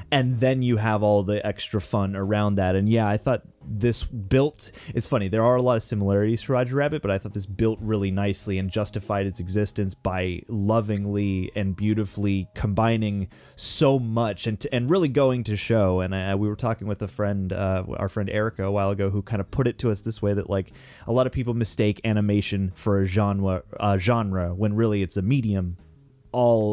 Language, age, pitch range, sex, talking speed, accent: English, 20-39, 100-125 Hz, male, 215 wpm, American